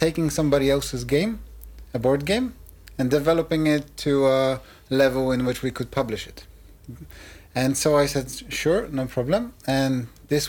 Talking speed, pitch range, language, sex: 160 wpm, 130-150 Hz, Polish, male